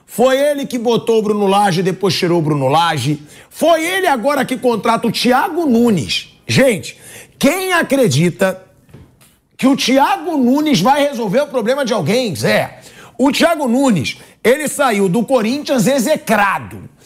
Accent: Brazilian